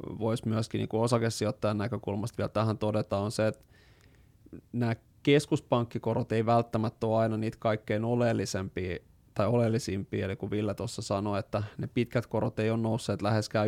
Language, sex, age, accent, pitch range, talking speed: Finnish, male, 20-39, native, 105-115 Hz, 155 wpm